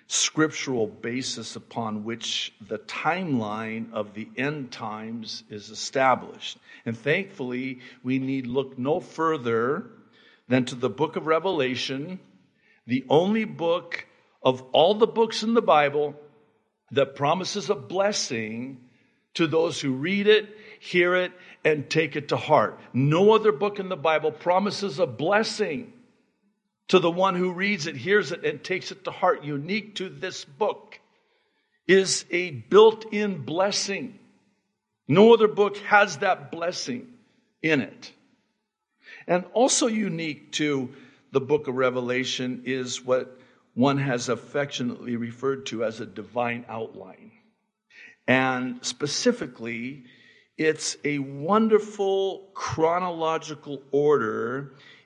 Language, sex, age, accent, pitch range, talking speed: English, male, 50-69, American, 130-200 Hz, 125 wpm